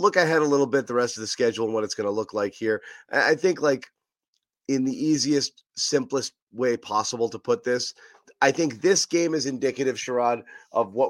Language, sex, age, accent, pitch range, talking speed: English, male, 30-49, American, 120-175 Hz, 210 wpm